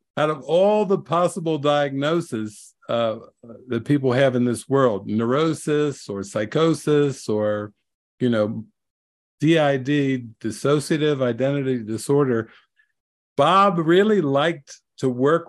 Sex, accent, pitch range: male, American, 120-155 Hz